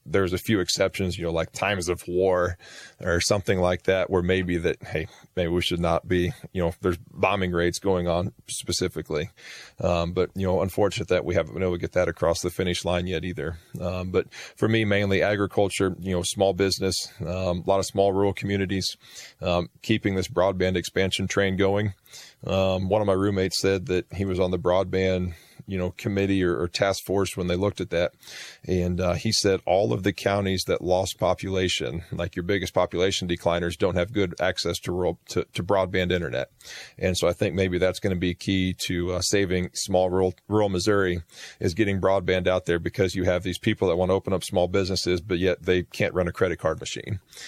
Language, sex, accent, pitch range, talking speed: English, male, American, 90-95 Hz, 205 wpm